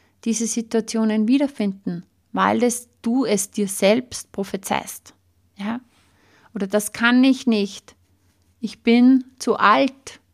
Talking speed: 115 wpm